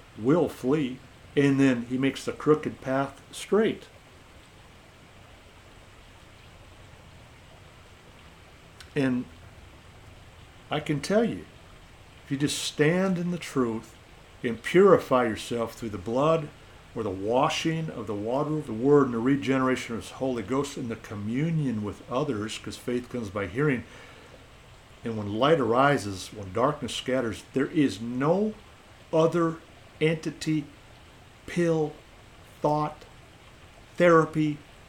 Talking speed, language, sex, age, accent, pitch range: 120 wpm, English, male, 60-79, American, 110-150 Hz